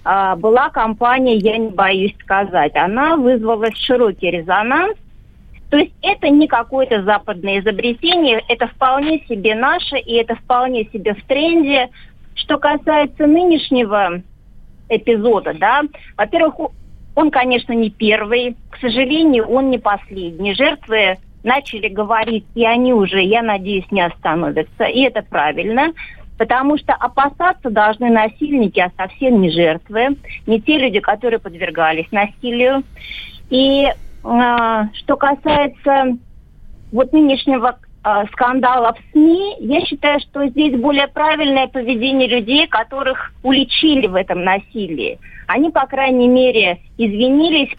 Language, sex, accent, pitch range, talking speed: Russian, female, native, 220-275 Hz, 120 wpm